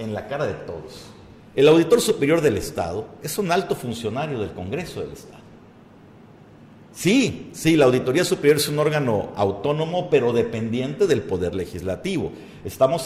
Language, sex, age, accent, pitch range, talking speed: Spanish, male, 50-69, Mexican, 125-205 Hz, 150 wpm